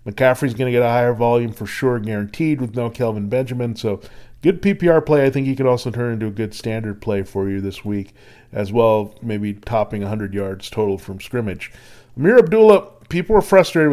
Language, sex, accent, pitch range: English, male, American, 110-145 Hz